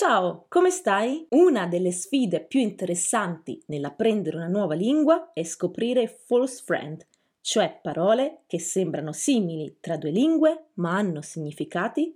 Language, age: Italian, 30-49